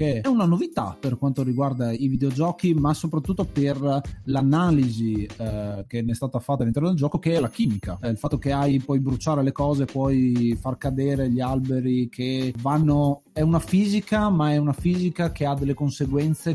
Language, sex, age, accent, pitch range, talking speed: Italian, male, 30-49, native, 125-160 Hz, 190 wpm